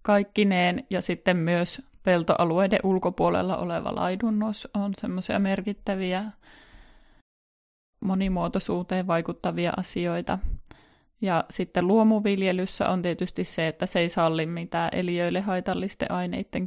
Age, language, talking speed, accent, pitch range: 20-39, Finnish, 100 wpm, native, 175-205 Hz